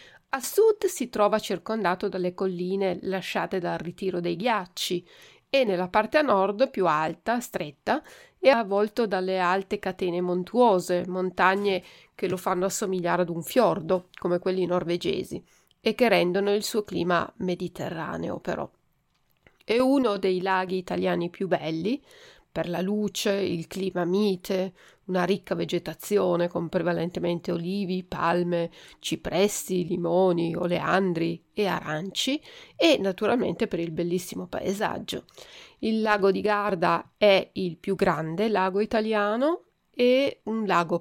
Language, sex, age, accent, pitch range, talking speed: Italian, female, 30-49, native, 180-215 Hz, 130 wpm